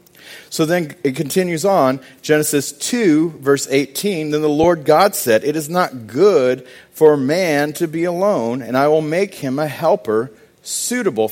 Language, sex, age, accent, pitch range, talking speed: English, male, 40-59, American, 110-150 Hz, 165 wpm